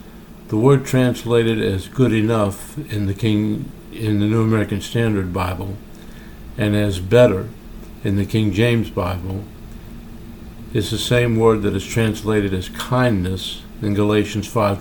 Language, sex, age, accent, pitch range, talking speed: English, male, 60-79, American, 100-115 Hz, 140 wpm